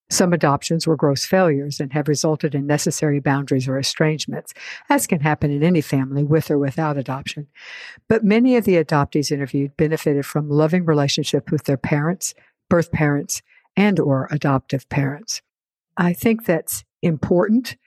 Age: 60-79